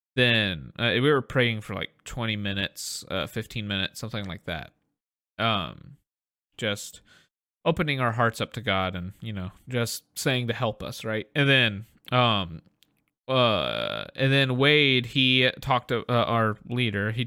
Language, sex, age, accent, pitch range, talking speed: English, male, 20-39, American, 105-135 Hz, 160 wpm